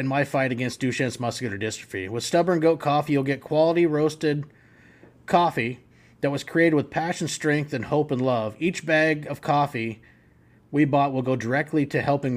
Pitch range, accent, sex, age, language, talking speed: 125-150 Hz, American, male, 30-49, English, 180 wpm